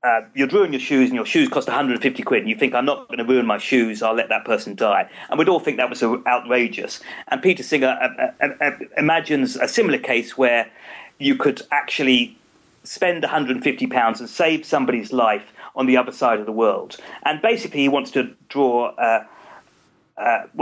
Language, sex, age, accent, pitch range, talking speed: English, male, 40-59, British, 130-210 Hz, 200 wpm